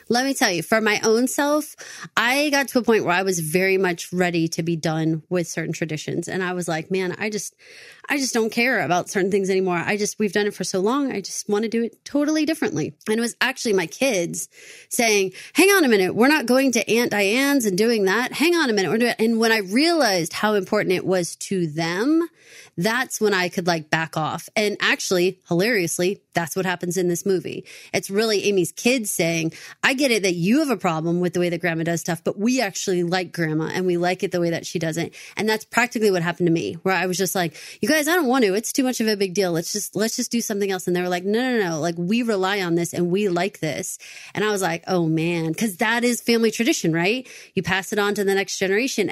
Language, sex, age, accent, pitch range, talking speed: English, female, 30-49, American, 180-230 Hz, 255 wpm